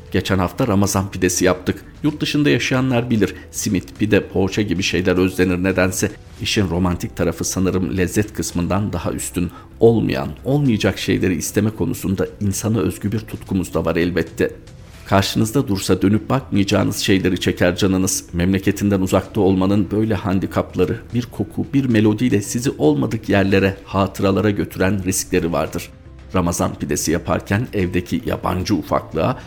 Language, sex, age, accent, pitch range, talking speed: Turkish, male, 50-69, native, 90-115 Hz, 130 wpm